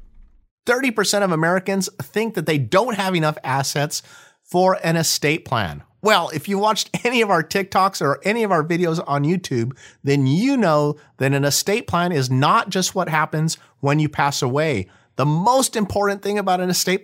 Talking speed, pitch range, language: 180 wpm, 145-210 Hz, English